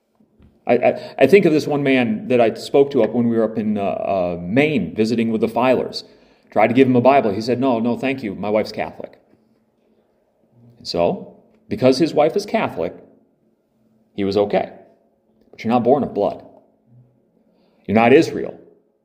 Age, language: 30-49, English